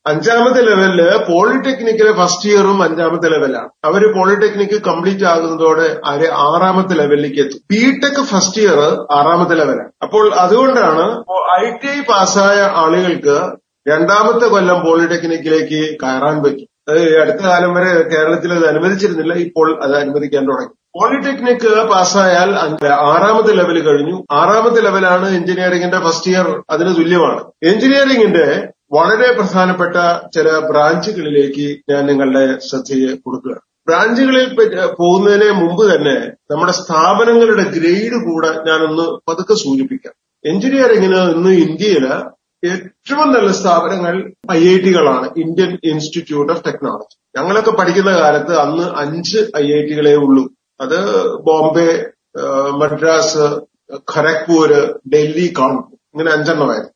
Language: Malayalam